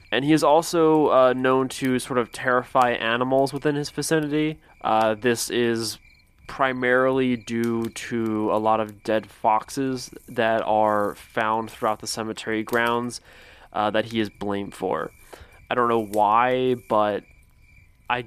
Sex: male